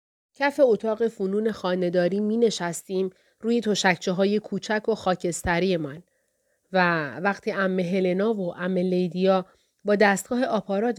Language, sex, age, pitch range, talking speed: Persian, female, 30-49, 180-225 Hz, 120 wpm